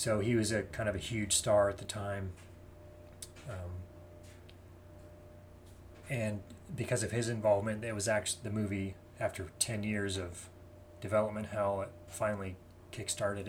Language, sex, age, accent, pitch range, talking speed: English, male, 30-49, American, 85-105 Hz, 140 wpm